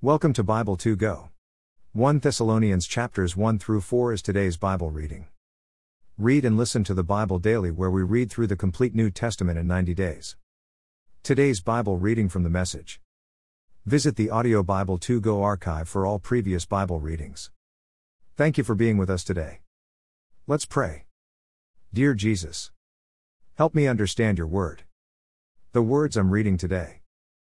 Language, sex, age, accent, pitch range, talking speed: English, male, 50-69, American, 75-110 Hz, 155 wpm